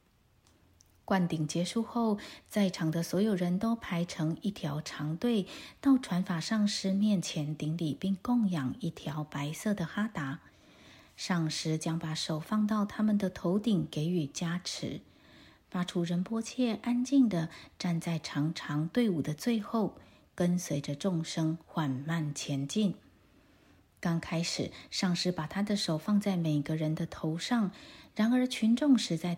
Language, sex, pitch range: Chinese, female, 160-220 Hz